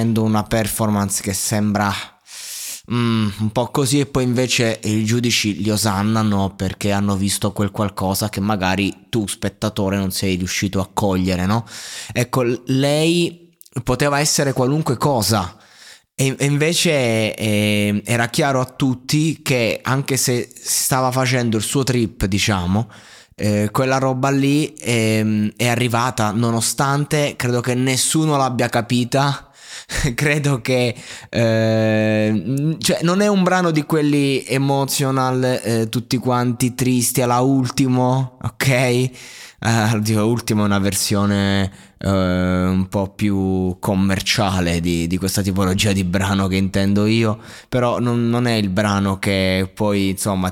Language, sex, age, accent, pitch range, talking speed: Italian, male, 20-39, native, 100-130 Hz, 130 wpm